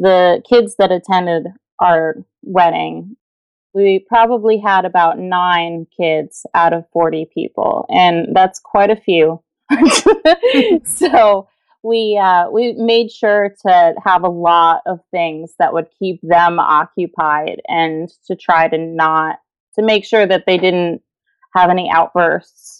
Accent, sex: American, female